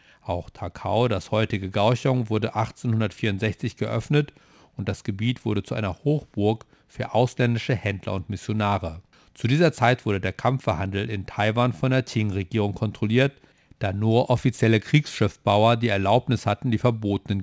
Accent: German